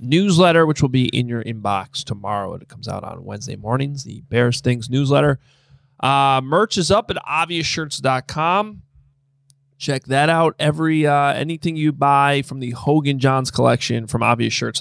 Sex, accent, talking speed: male, American, 160 wpm